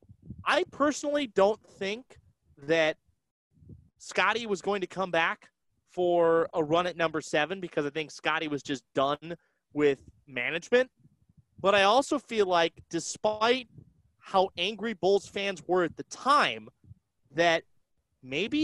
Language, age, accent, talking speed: English, 30-49, American, 135 wpm